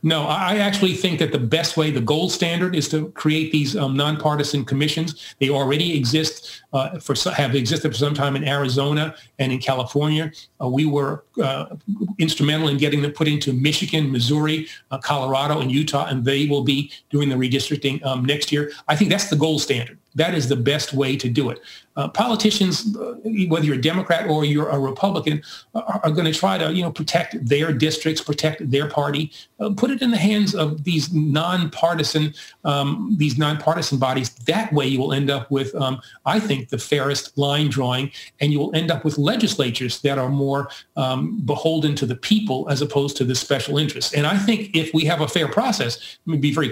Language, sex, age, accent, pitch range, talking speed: English, male, 40-59, American, 140-160 Hz, 205 wpm